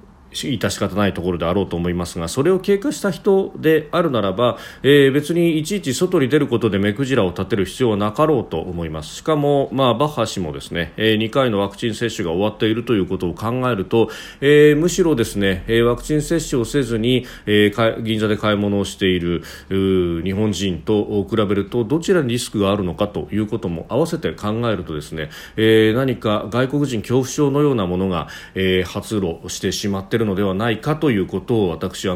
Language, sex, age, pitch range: Japanese, male, 40-59, 95-140 Hz